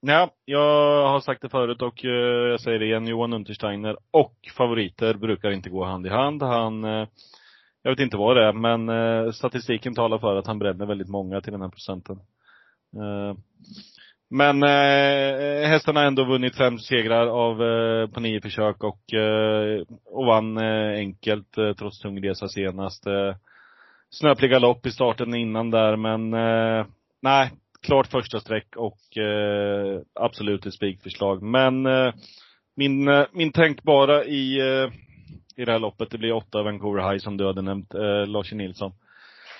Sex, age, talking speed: male, 30-49, 150 wpm